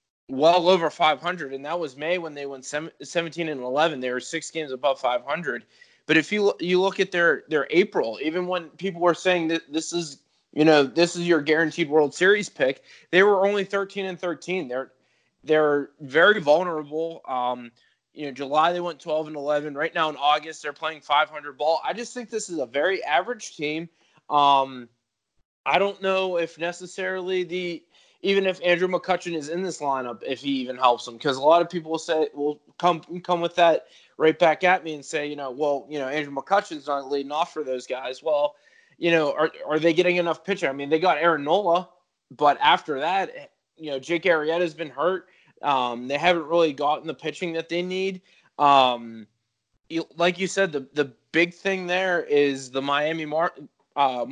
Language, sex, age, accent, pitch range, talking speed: English, male, 20-39, American, 145-180 Hz, 200 wpm